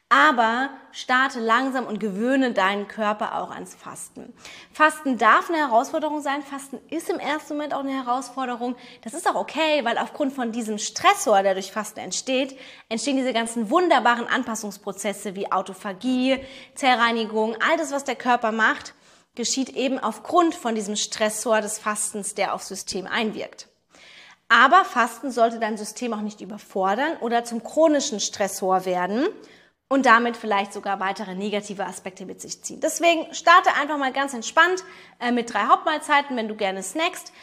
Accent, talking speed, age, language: German, 155 wpm, 20-39, German